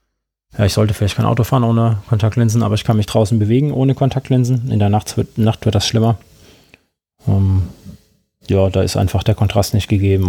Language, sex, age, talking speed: German, male, 20-39, 200 wpm